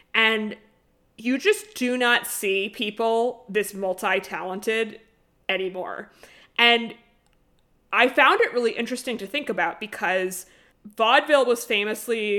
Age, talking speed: 20-39, 110 wpm